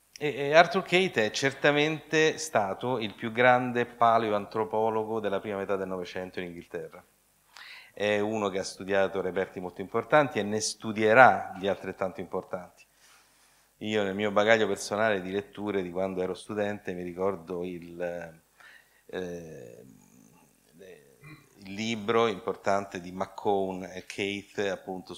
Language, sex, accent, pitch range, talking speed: Italian, male, native, 90-110 Hz, 125 wpm